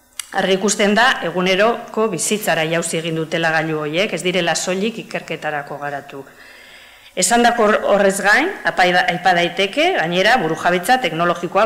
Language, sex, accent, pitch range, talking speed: Spanish, female, Spanish, 160-200 Hz, 130 wpm